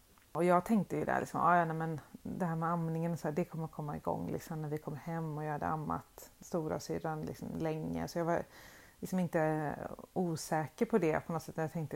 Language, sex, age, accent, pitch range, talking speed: Swedish, female, 30-49, native, 150-190 Hz, 205 wpm